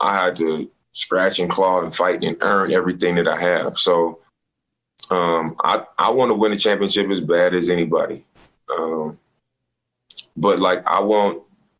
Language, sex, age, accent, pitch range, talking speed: English, male, 20-39, American, 85-100 Hz, 165 wpm